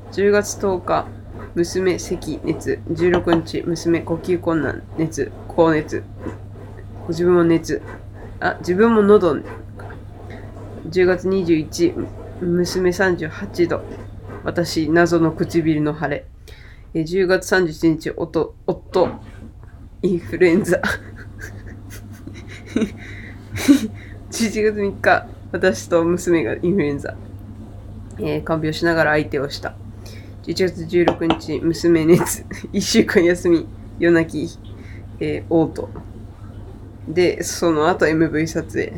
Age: 20-39